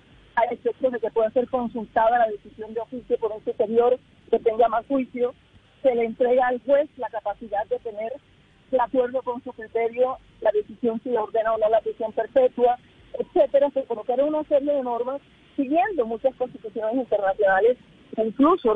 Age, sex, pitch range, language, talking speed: 40-59, female, 220-265 Hz, Spanish, 170 wpm